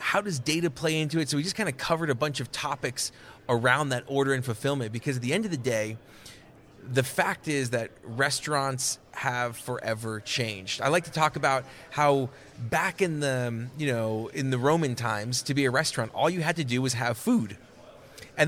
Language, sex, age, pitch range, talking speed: English, male, 30-49, 125-155 Hz, 210 wpm